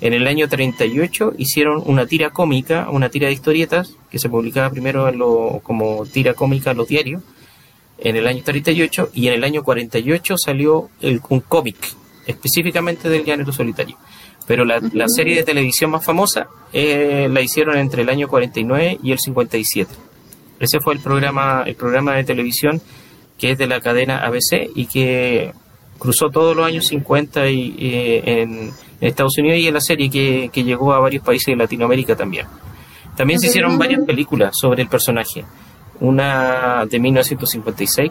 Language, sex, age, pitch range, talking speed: Spanish, male, 30-49, 120-150 Hz, 170 wpm